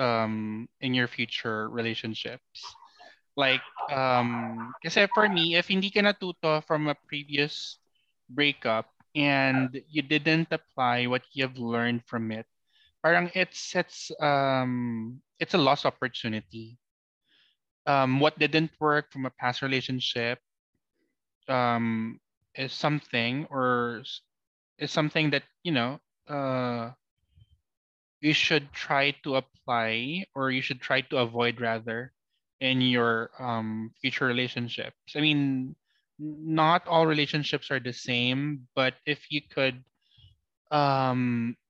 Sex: male